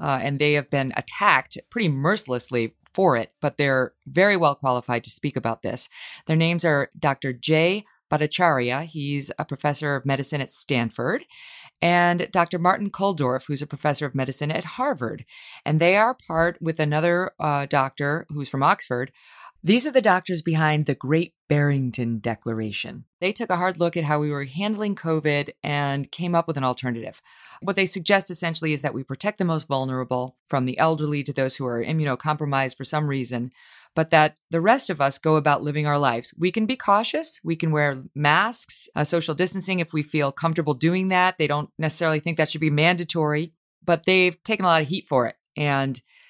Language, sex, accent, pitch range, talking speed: English, female, American, 135-175 Hz, 190 wpm